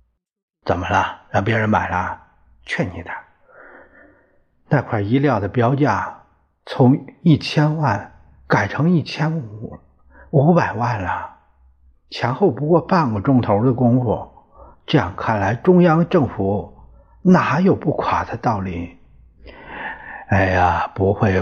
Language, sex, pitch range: Chinese, male, 100-140 Hz